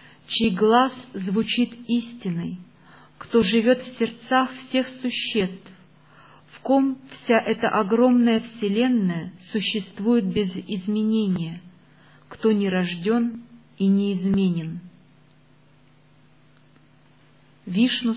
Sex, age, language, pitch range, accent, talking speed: female, 40-59, Russian, 170-230 Hz, native, 85 wpm